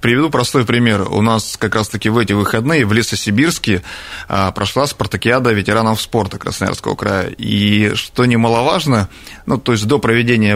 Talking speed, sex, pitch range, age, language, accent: 150 wpm, male, 105-125 Hz, 30-49, Russian, native